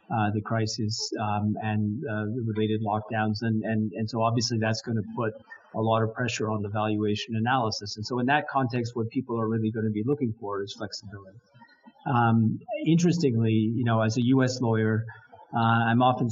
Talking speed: 190 wpm